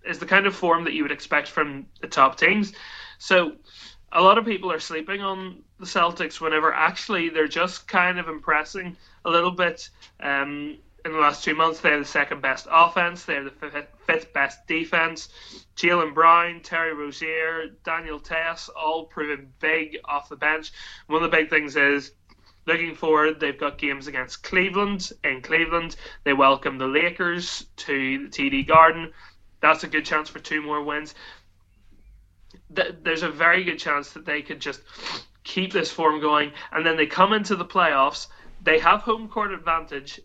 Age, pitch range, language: 20-39, 145-170 Hz, English